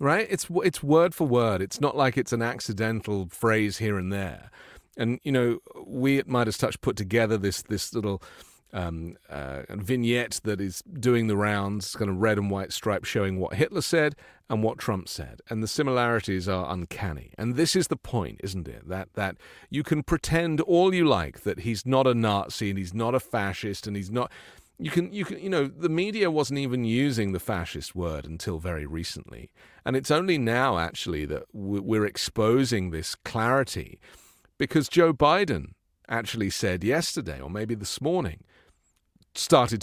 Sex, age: male, 40-59